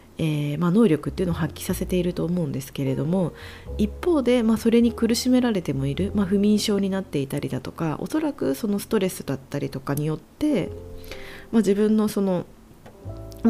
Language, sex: Japanese, female